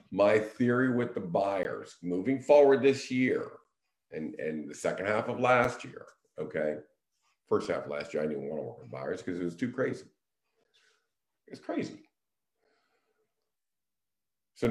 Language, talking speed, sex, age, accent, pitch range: English, 155 wpm, male, 50-69, American, 85-125 Hz